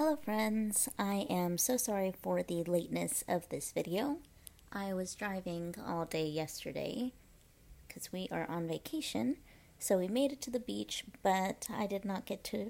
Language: English